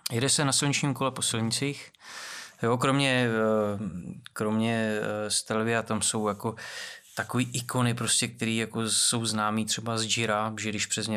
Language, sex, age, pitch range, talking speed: Czech, male, 20-39, 110-125 Hz, 145 wpm